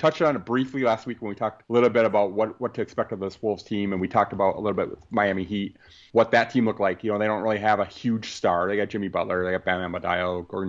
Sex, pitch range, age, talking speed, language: male, 95-110 Hz, 30-49, 305 wpm, English